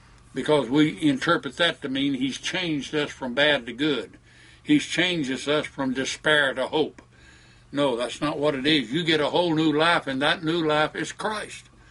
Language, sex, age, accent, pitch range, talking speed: English, male, 60-79, American, 115-170 Hz, 190 wpm